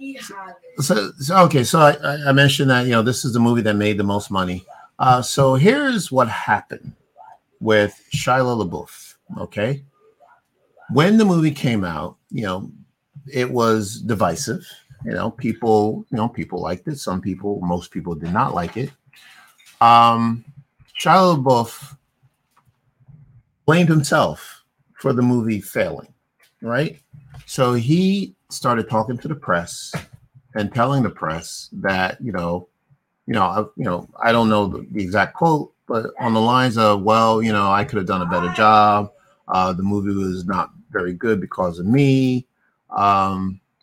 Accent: American